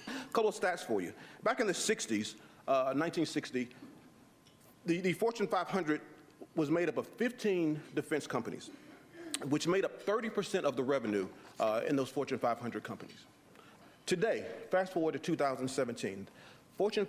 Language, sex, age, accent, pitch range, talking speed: English, male, 40-59, American, 135-185 Hz, 150 wpm